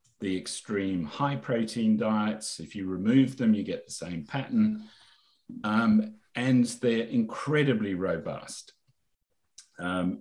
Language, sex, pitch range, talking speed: English, male, 85-115 Hz, 120 wpm